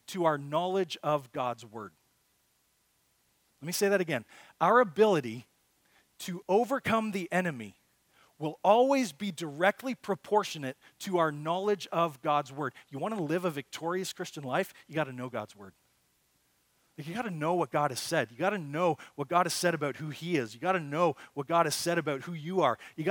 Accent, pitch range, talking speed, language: American, 145-195 Hz, 195 wpm, English